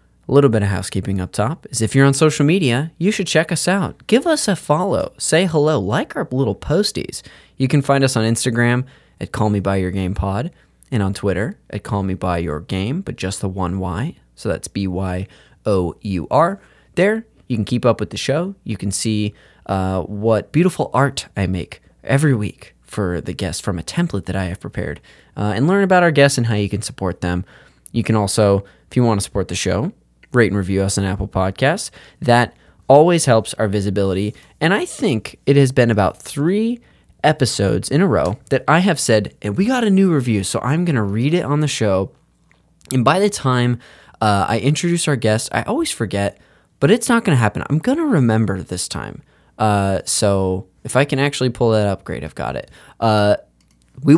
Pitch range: 100-145 Hz